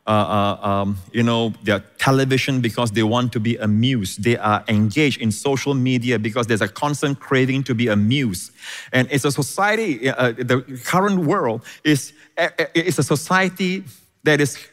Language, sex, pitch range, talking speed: English, male, 120-170 Hz, 170 wpm